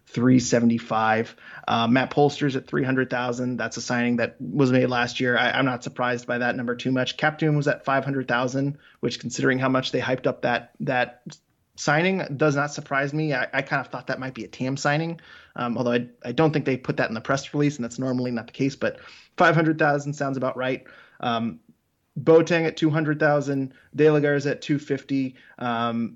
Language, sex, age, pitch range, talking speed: English, male, 20-39, 125-145 Hz, 190 wpm